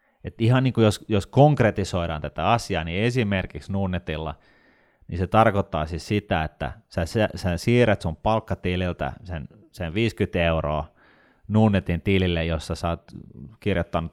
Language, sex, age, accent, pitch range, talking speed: Finnish, male, 30-49, native, 80-100 Hz, 135 wpm